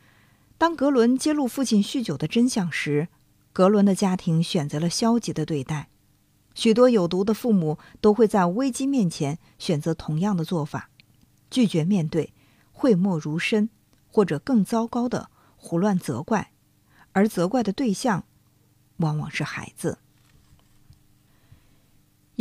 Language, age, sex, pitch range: Chinese, 50-69, female, 140-220 Hz